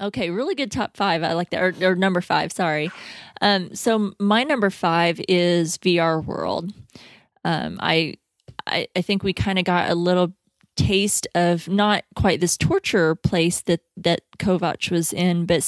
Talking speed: 170 wpm